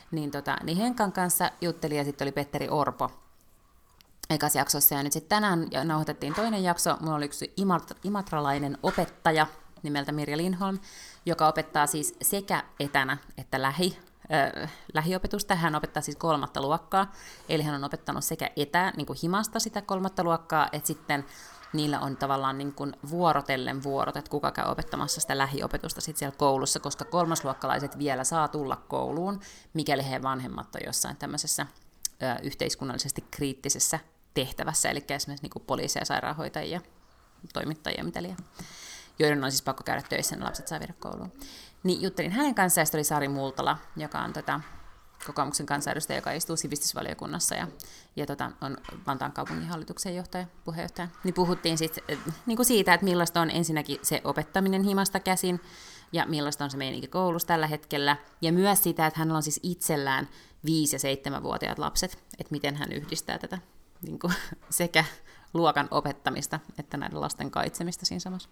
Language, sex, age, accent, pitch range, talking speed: Finnish, female, 30-49, native, 145-175 Hz, 155 wpm